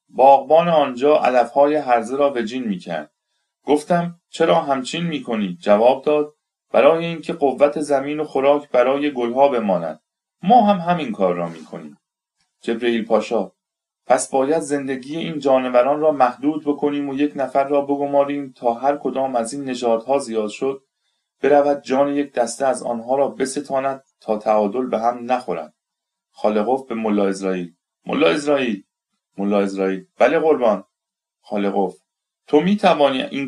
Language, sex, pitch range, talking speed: Persian, male, 120-150 Hz, 145 wpm